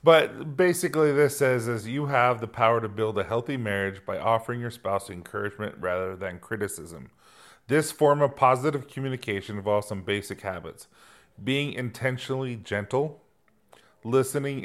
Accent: American